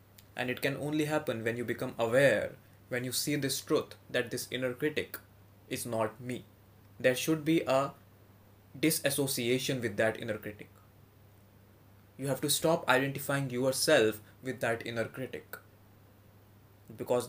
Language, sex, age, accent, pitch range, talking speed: English, male, 20-39, Indian, 105-135 Hz, 140 wpm